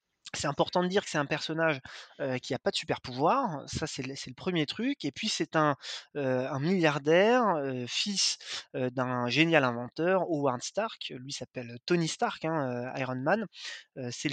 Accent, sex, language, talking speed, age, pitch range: French, male, French, 190 wpm, 20-39, 135-175 Hz